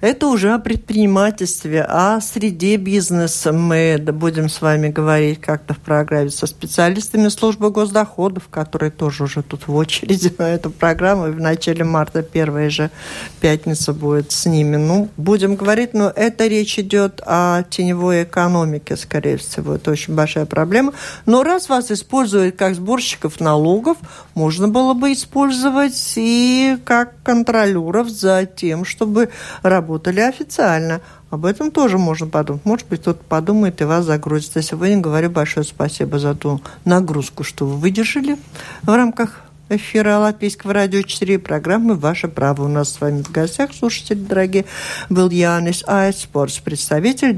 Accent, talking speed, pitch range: native, 150 wpm, 155-215 Hz